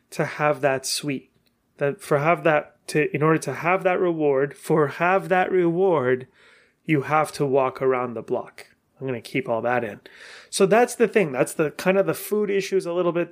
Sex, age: male, 30-49